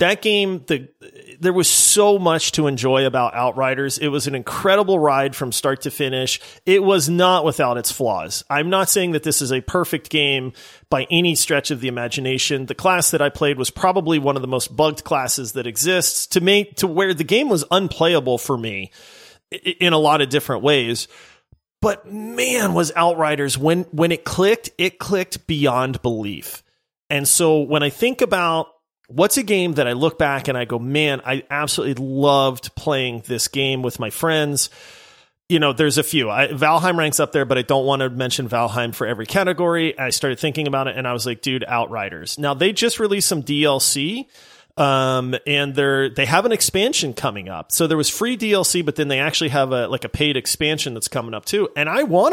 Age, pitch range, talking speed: 30-49, 135-175 Hz, 205 wpm